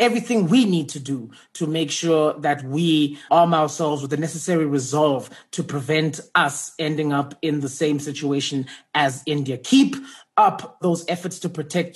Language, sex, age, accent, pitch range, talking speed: English, male, 30-49, South African, 150-185 Hz, 165 wpm